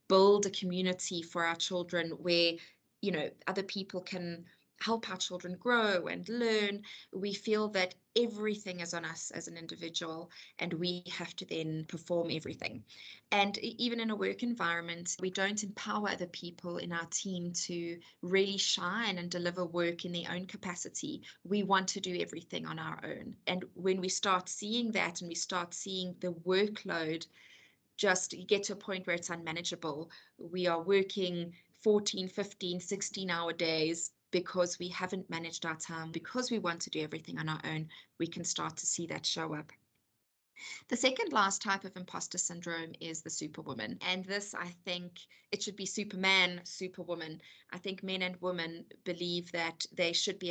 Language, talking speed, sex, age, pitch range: English, 175 wpm, female, 20-39, 170-195 Hz